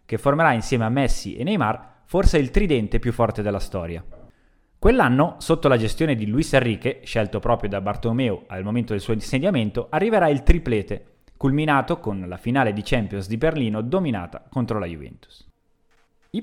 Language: Italian